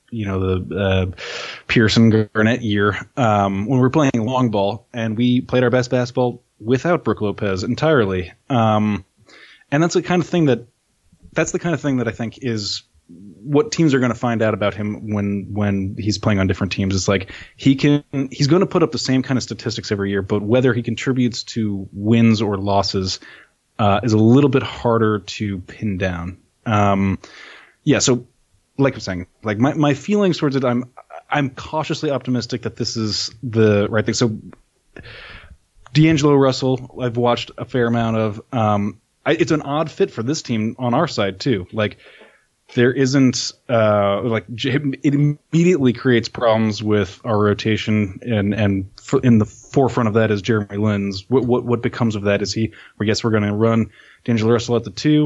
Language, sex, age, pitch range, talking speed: English, male, 20-39, 105-130 Hz, 190 wpm